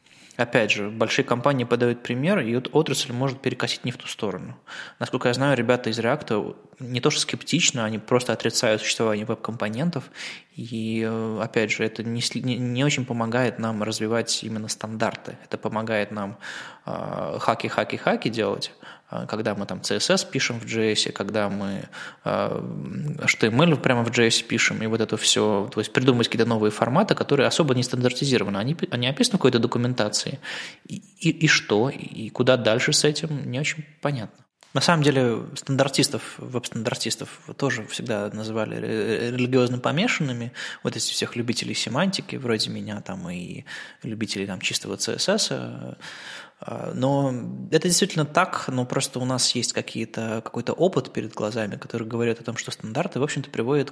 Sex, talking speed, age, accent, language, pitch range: male, 150 wpm, 20-39, native, Russian, 110-140 Hz